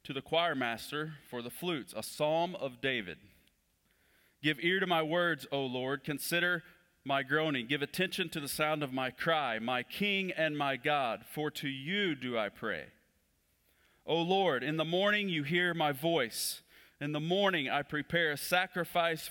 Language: English